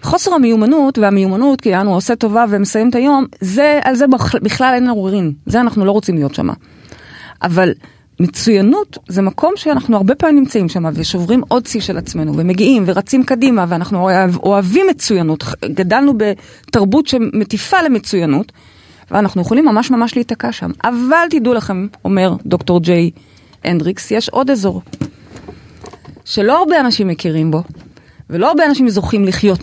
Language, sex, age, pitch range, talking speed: Hebrew, female, 30-49, 180-260 Hz, 145 wpm